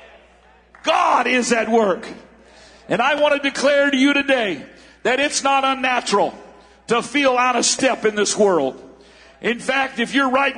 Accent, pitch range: American, 245-285 Hz